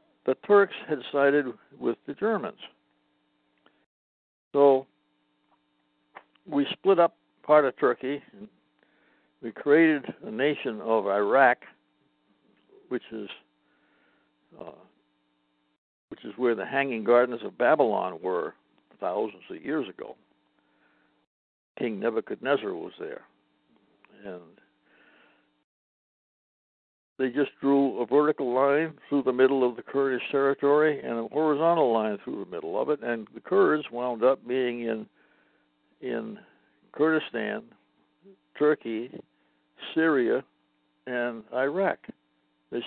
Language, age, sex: English, 60-79, male